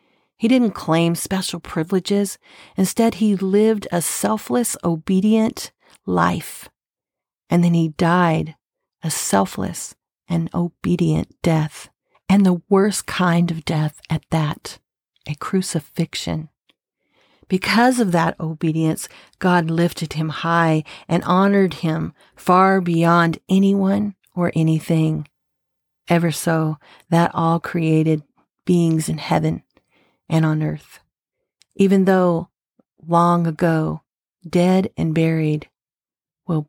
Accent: American